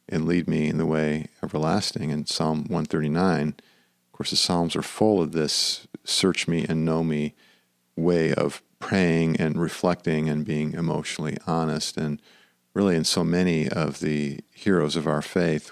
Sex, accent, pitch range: male, American, 80-95 Hz